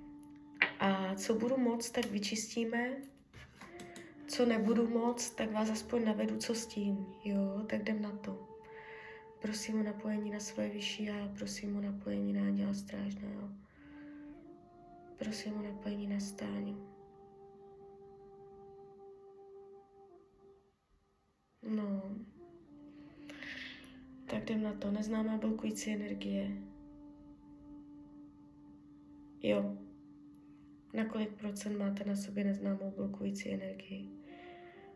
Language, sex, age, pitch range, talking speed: Czech, female, 20-39, 195-230 Hz, 100 wpm